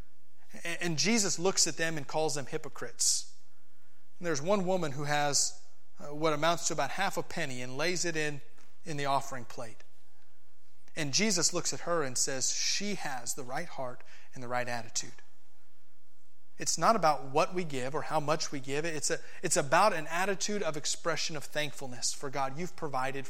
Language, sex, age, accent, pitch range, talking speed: English, male, 30-49, American, 125-165 Hz, 185 wpm